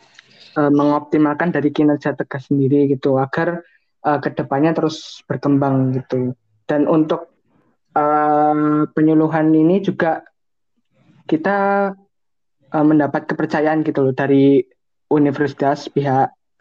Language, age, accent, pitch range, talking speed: Indonesian, 20-39, native, 140-160 Hz, 100 wpm